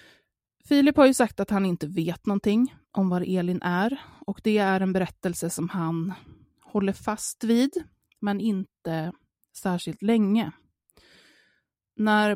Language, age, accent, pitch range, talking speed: Swedish, 20-39, native, 175-210 Hz, 135 wpm